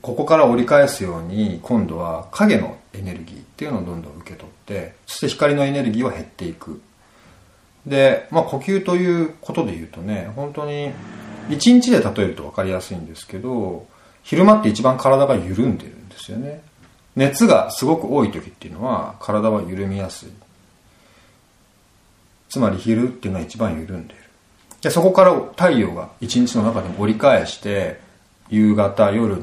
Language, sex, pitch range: Japanese, male, 95-140 Hz